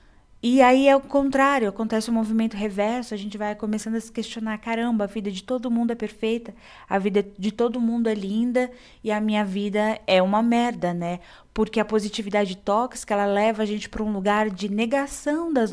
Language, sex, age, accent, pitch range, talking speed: Portuguese, female, 20-39, Brazilian, 195-240 Hz, 200 wpm